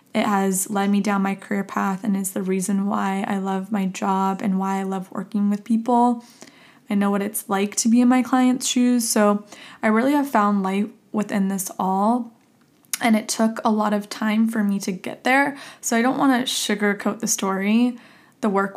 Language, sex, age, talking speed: English, female, 20-39, 210 wpm